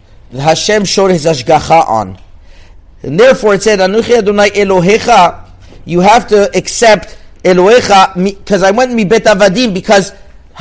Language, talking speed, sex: English, 130 wpm, male